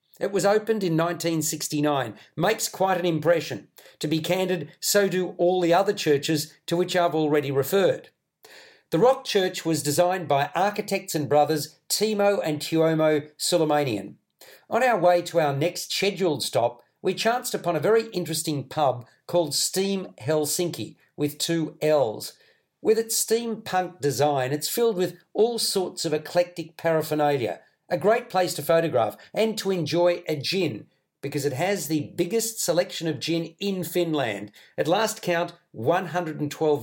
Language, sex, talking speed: English, male, 150 wpm